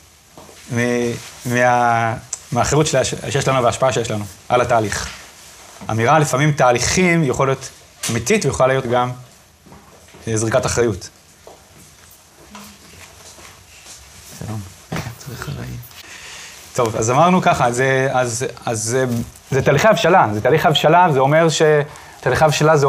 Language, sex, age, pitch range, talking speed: Hebrew, male, 30-49, 115-150 Hz, 105 wpm